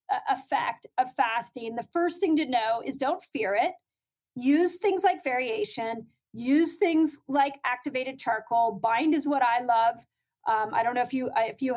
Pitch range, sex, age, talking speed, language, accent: 250-315 Hz, female, 30-49, 170 wpm, English, American